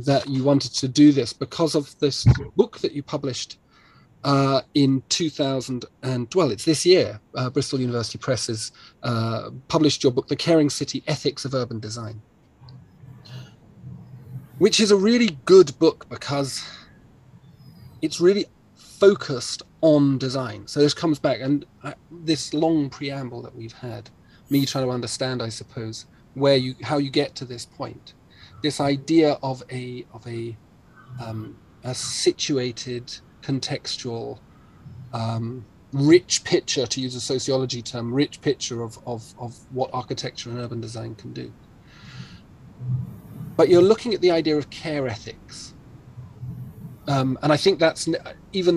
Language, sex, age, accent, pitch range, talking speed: English, male, 40-59, British, 120-145 Hz, 145 wpm